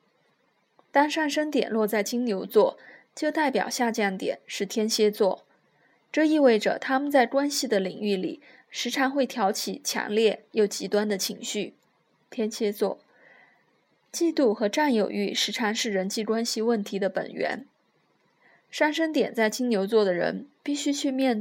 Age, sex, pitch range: 20-39, female, 205-265 Hz